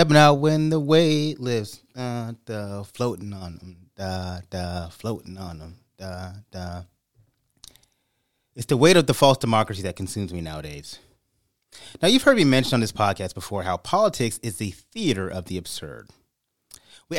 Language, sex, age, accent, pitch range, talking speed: English, male, 30-49, American, 100-150 Hz, 160 wpm